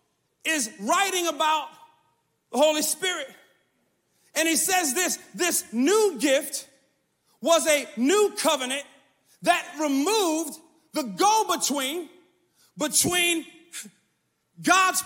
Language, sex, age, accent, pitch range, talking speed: English, male, 40-59, American, 300-385 Hz, 95 wpm